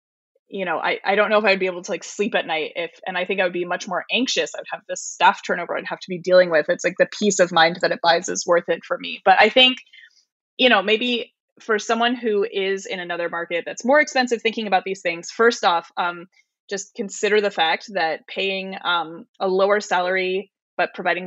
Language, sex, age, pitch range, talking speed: English, female, 20-39, 175-210 Hz, 240 wpm